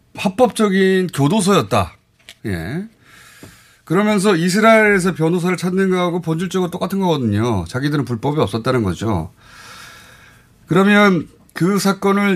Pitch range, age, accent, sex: 115-170 Hz, 30-49, native, male